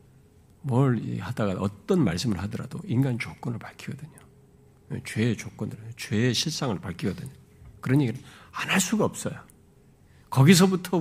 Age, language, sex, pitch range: 50-69, Korean, male, 100-140 Hz